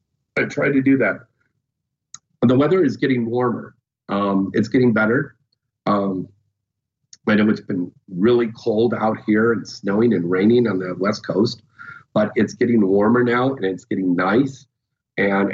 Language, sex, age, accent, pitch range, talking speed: English, male, 40-59, American, 110-140 Hz, 160 wpm